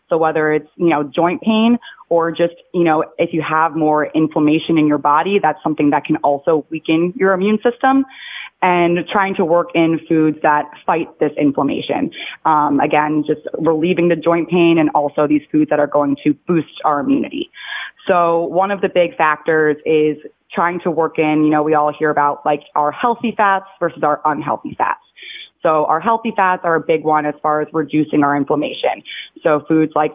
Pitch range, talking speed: 150-175 Hz, 195 wpm